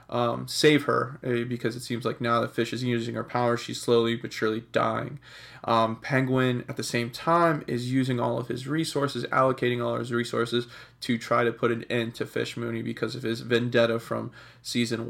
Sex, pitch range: male, 120-130 Hz